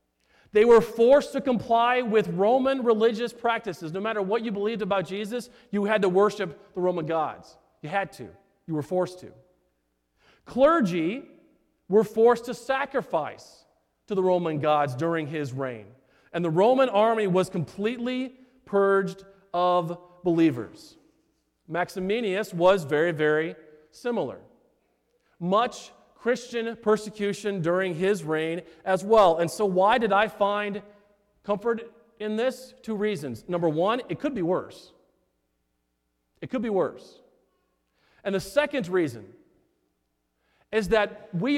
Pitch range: 170-235 Hz